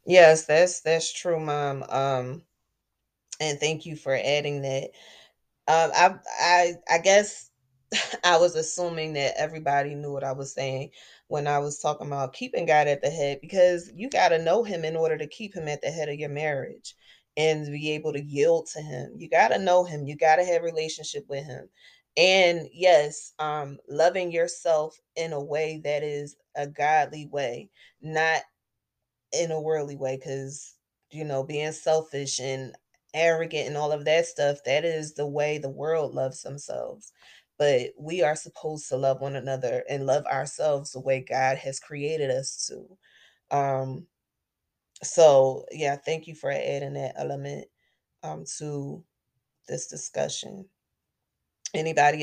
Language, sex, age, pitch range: English, female, 20-39, 140-160 Hz